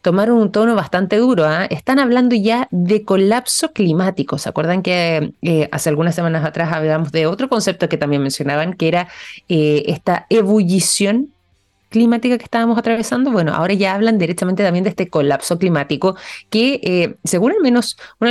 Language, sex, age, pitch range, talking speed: Spanish, female, 20-39, 160-225 Hz, 165 wpm